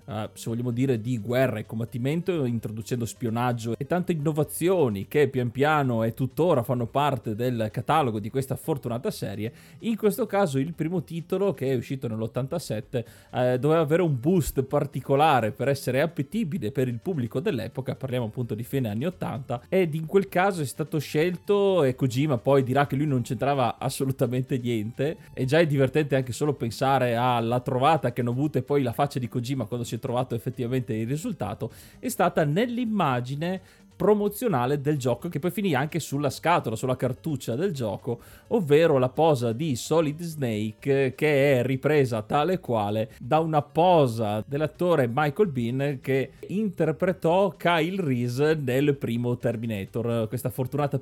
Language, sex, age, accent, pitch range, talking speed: Italian, male, 20-39, native, 120-160 Hz, 160 wpm